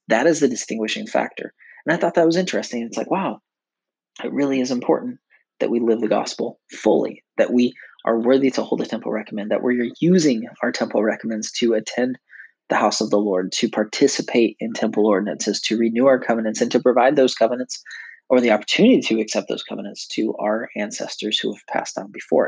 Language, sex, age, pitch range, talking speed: English, male, 20-39, 115-140 Hz, 200 wpm